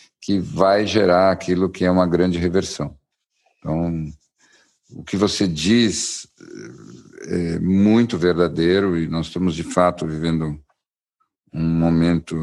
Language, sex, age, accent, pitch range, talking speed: Portuguese, male, 60-79, Brazilian, 85-100 Hz, 120 wpm